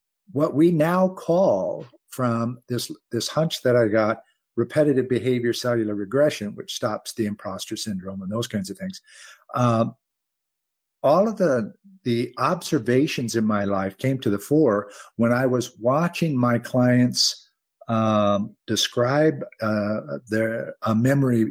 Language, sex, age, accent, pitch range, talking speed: English, male, 50-69, American, 105-145 Hz, 140 wpm